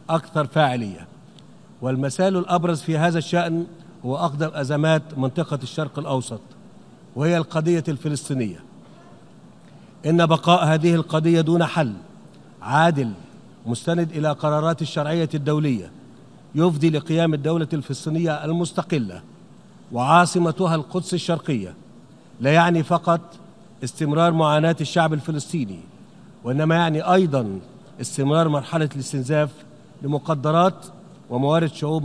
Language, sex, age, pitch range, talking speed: Arabic, male, 50-69, 145-170 Hz, 95 wpm